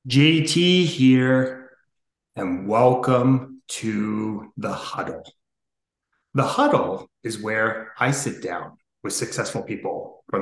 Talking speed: 105 wpm